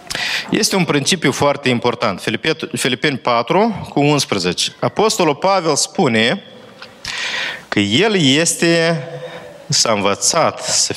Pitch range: 115-170 Hz